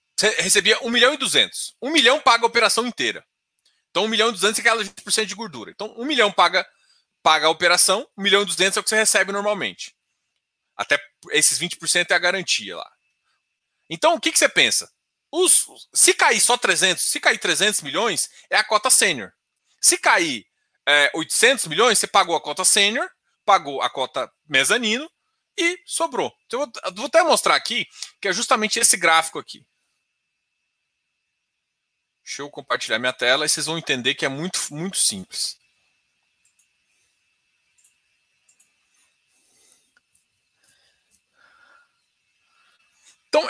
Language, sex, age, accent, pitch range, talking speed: Portuguese, male, 20-39, Brazilian, 195-300 Hz, 150 wpm